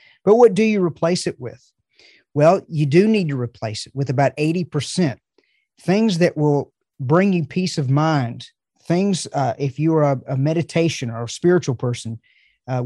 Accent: American